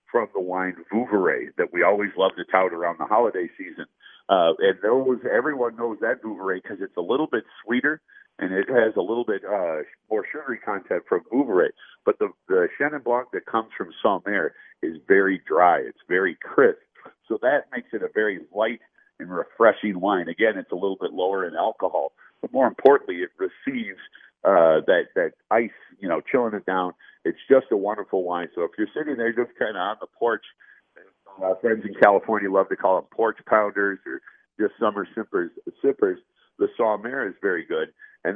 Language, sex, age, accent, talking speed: English, male, 50-69, American, 195 wpm